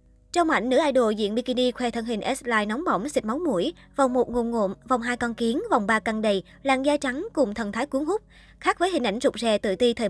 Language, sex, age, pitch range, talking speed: Vietnamese, male, 20-39, 215-265 Hz, 260 wpm